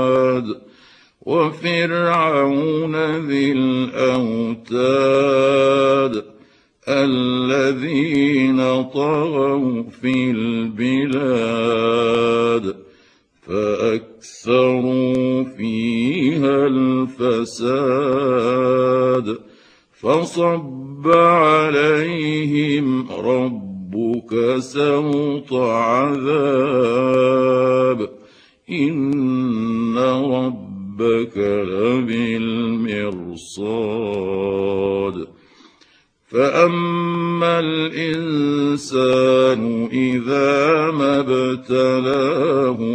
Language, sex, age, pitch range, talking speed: Arabic, male, 60-79, 115-140 Hz, 30 wpm